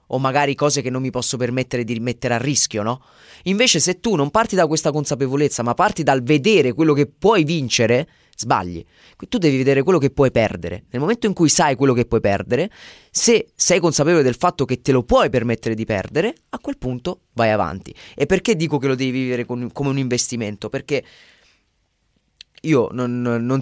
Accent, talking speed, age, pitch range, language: native, 195 wpm, 20-39, 120-155 Hz, Italian